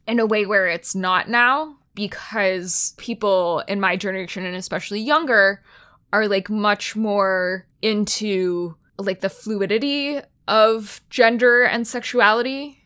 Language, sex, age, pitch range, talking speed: English, female, 20-39, 185-230 Hz, 125 wpm